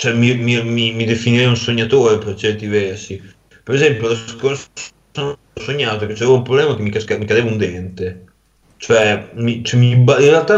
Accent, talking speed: native, 185 wpm